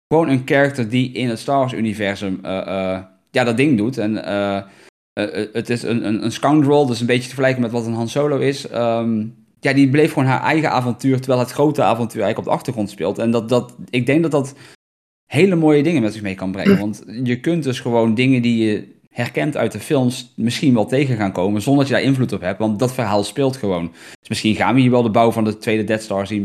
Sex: male